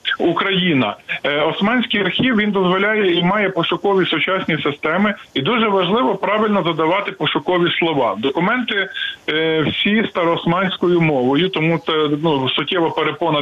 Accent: native